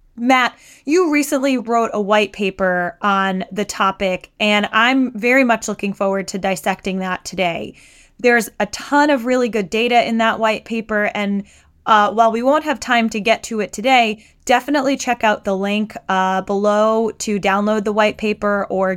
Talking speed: 175 wpm